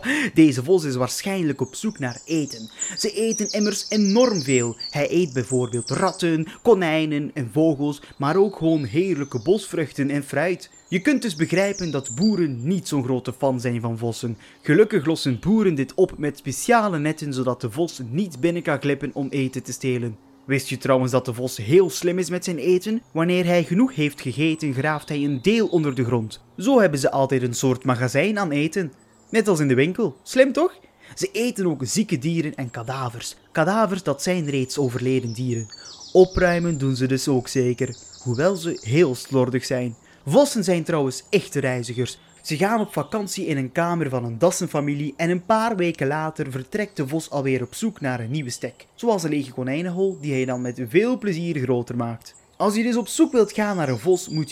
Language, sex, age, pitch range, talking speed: Dutch, male, 20-39, 130-185 Hz, 195 wpm